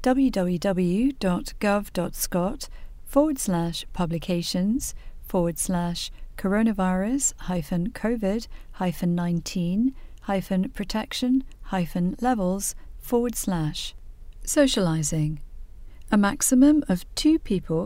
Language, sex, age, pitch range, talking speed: English, female, 40-59, 175-230 Hz, 75 wpm